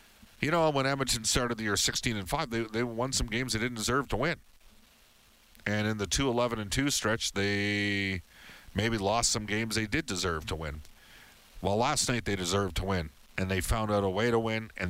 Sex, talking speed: male, 205 wpm